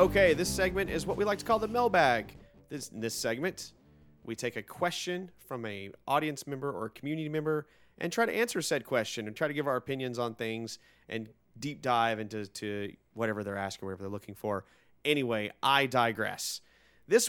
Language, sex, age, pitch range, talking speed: English, male, 30-49, 115-170 Hz, 200 wpm